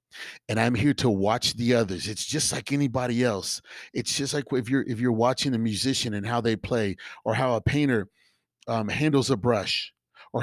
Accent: American